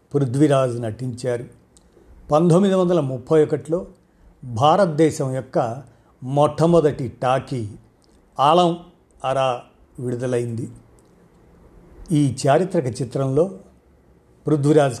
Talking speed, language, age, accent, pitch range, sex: 70 wpm, Telugu, 50-69, native, 120-150 Hz, male